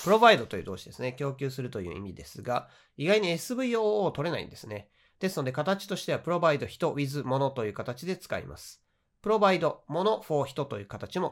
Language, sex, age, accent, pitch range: Japanese, male, 40-59, native, 125-170 Hz